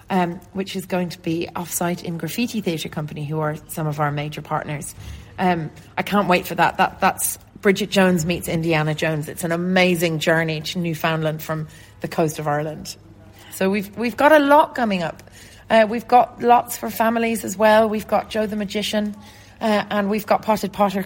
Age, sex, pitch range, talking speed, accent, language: 30-49, female, 165-205 Hz, 195 wpm, British, English